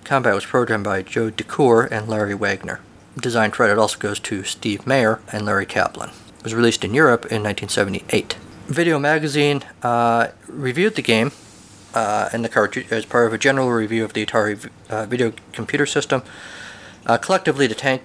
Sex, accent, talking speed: male, American, 165 wpm